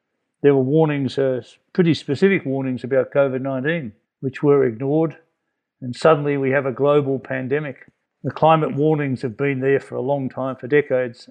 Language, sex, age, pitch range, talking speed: English, male, 50-69, 130-155 Hz, 165 wpm